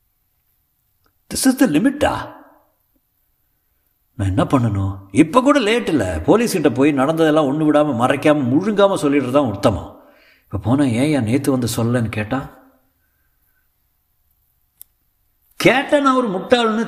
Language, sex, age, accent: Tamil, male, 60-79, native